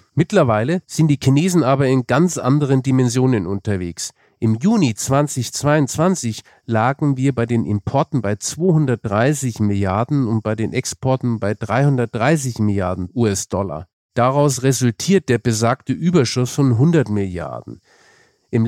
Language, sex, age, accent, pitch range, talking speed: German, male, 50-69, German, 115-145 Hz, 120 wpm